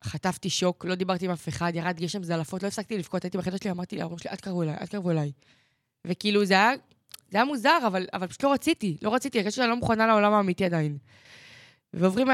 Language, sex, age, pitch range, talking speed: Hebrew, female, 20-39, 160-195 Hz, 240 wpm